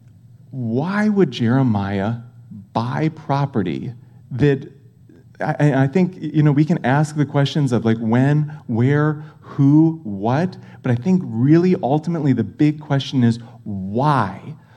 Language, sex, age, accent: English, male, 30-49, American